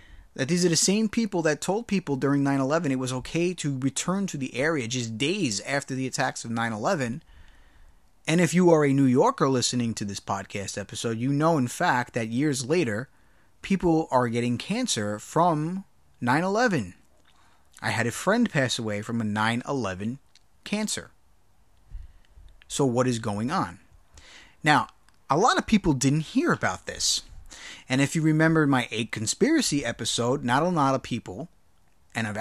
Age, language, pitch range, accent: 30-49, English, 110-160 Hz, American